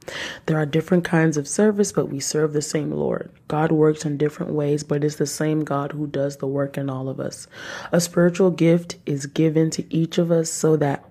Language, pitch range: English, 145-165 Hz